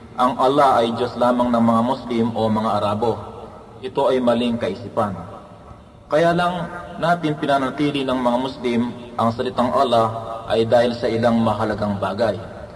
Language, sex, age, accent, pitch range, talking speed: Filipino, male, 20-39, native, 110-125 Hz, 145 wpm